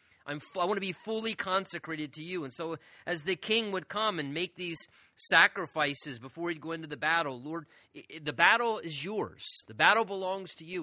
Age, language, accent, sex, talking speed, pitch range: 30-49, English, American, male, 195 wpm, 145-180 Hz